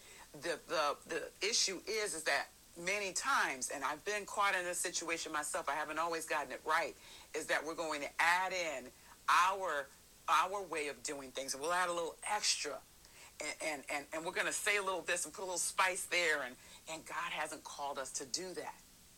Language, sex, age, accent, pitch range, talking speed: English, female, 50-69, American, 145-185 Hz, 210 wpm